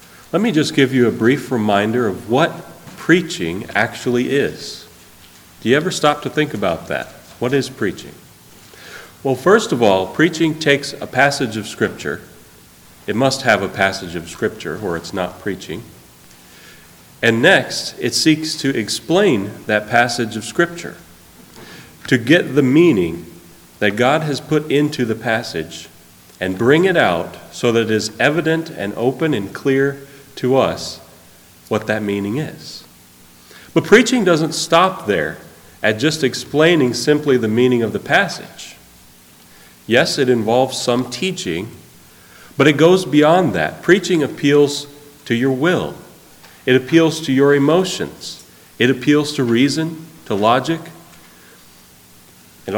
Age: 40-59